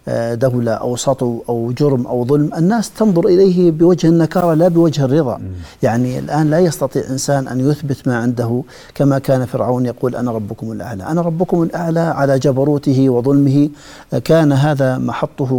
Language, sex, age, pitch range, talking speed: Arabic, male, 50-69, 120-150 Hz, 155 wpm